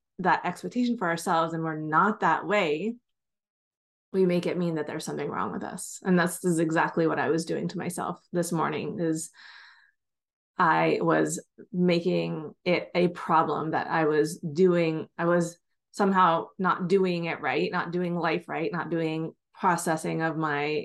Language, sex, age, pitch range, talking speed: English, female, 20-39, 160-180 Hz, 165 wpm